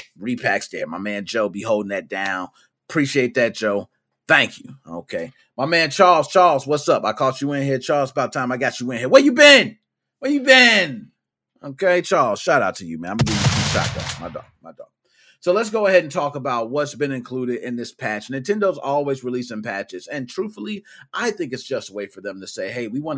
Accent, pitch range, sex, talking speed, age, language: American, 125-200 Hz, male, 230 wpm, 30-49, English